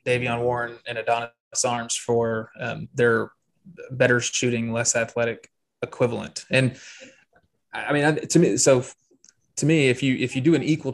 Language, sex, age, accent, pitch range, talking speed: English, male, 20-39, American, 115-130 Hz, 155 wpm